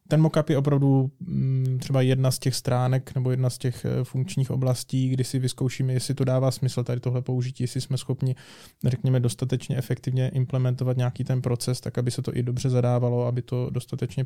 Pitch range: 125-130 Hz